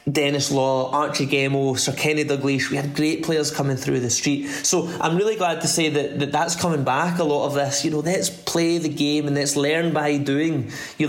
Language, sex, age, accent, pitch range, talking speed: English, male, 20-39, British, 135-155 Hz, 225 wpm